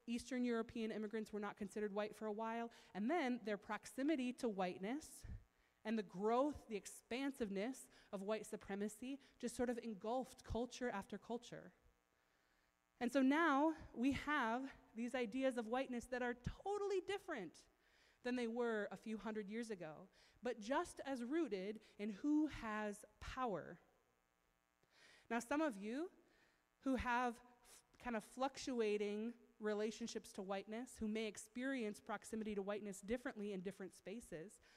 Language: English